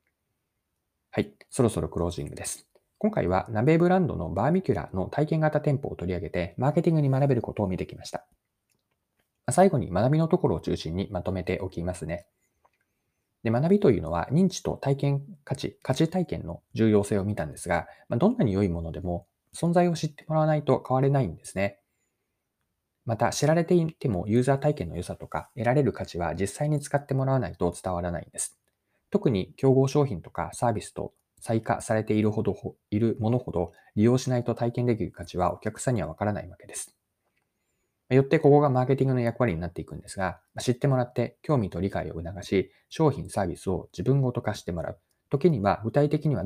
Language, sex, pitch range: Japanese, male, 95-140 Hz